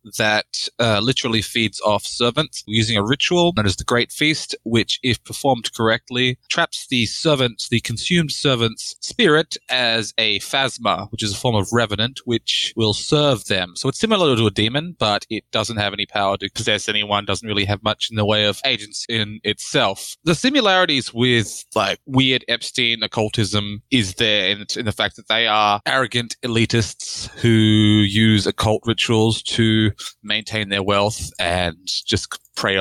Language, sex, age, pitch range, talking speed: English, male, 20-39, 105-125 Hz, 170 wpm